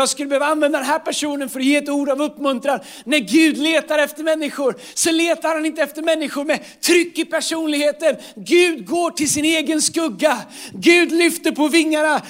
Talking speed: 190 wpm